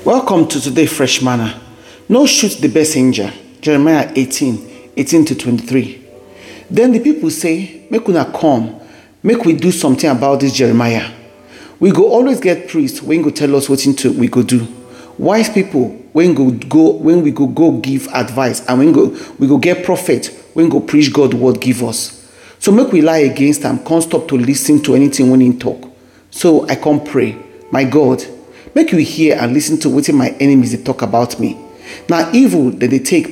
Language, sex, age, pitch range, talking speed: English, male, 40-59, 130-175 Hz, 190 wpm